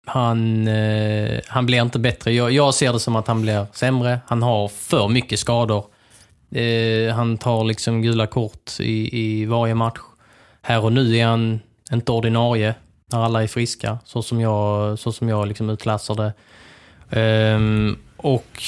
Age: 20-39